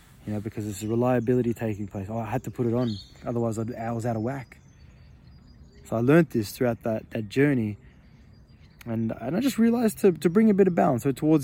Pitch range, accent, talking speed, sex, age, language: 115-140 Hz, Australian, 225 wpm, male, 20-39, English